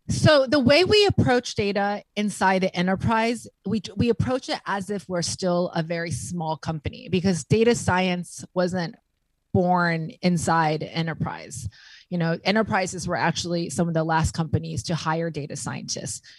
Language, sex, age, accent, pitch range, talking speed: English, female, 30-49, American, 165-205 Hz, 155 wpm